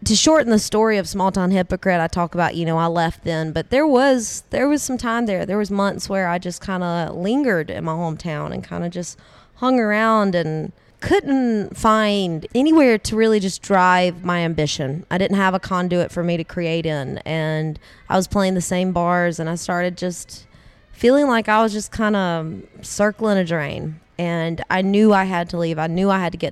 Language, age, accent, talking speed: English, 20-39, American, 215 wpm